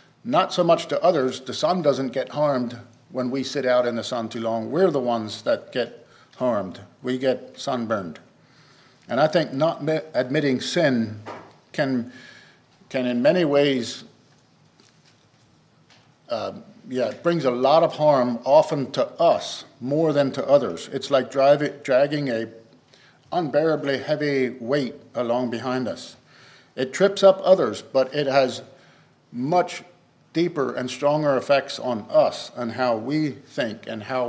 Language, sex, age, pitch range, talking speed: English, male, 50-69, 125-155 Hz, 150 wpm